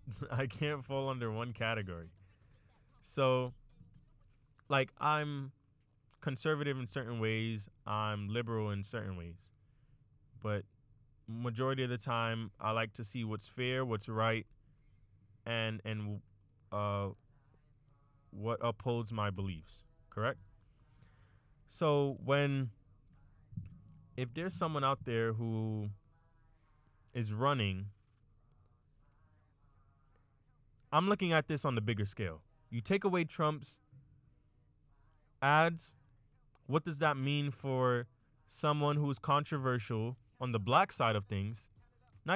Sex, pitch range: male, 110-135 Hz